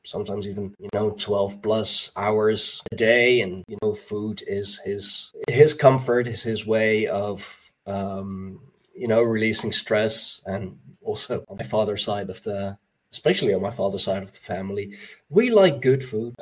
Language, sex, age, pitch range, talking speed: English, male, 20-39, 100-120 Hz, 170 wpm